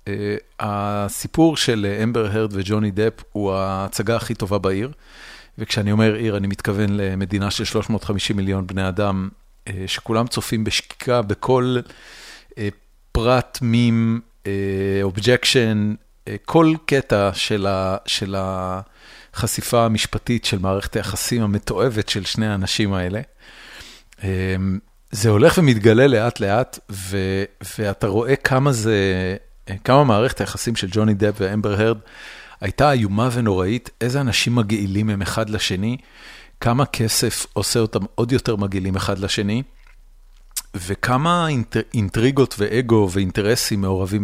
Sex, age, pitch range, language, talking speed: male, 40-59, 100-120 Hz, Hebrew, 115 wpm